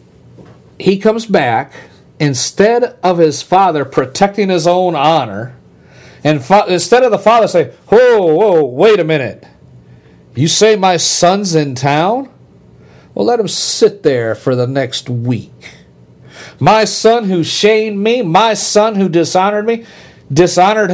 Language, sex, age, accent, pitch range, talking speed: English, male, 50-69, American, 135-220 Hz, 140 wpm